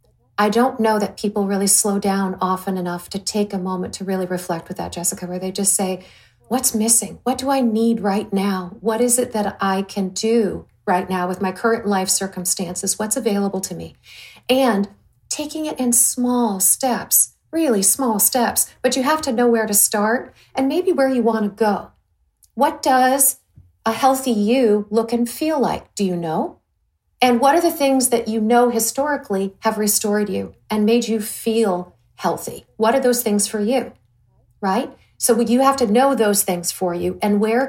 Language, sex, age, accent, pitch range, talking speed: English, female, 40-59, American, 195-240 Hz, 195 wpm